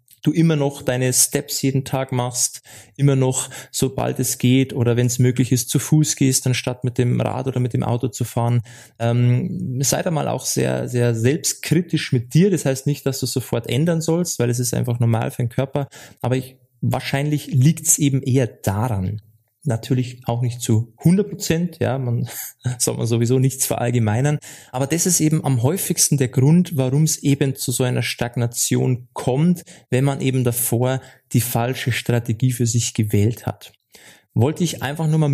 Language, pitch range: German, 120-145 Hz